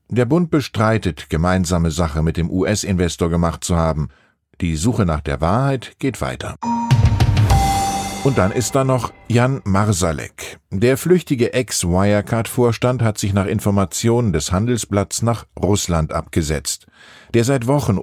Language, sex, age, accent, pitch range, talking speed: German, male, 50-69, German, 90-125 Hz, 135 wpm